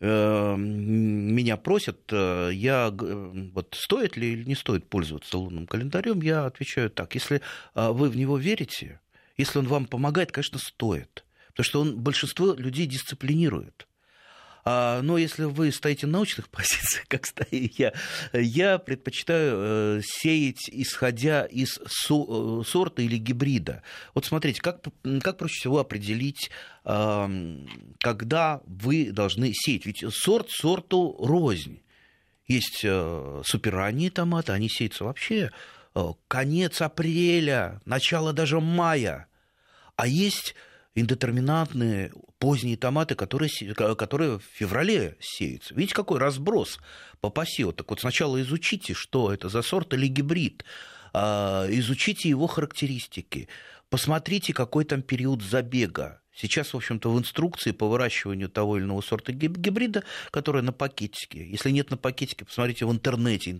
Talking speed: 125 wpm